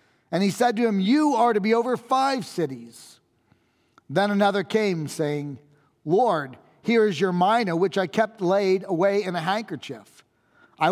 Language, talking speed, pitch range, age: English, 165 wpm, 170-220 Hz, 40-59